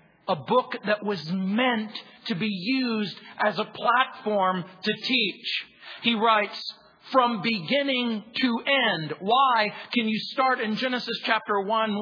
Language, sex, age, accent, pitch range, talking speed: English, male, 40-59, American, 160-220 Hz, 135 wpm